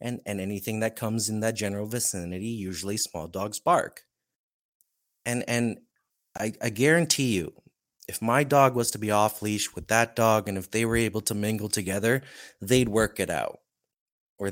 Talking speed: 180 wpm